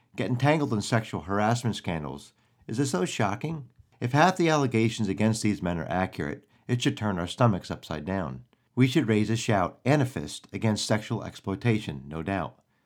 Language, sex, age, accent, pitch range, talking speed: English, male, 50-69, American, 100-130 Hz, 180 wpm